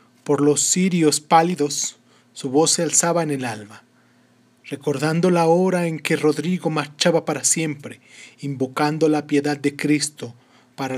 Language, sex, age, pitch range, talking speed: Spanish, male, 30-49, 135-175 Hz, 140 wpm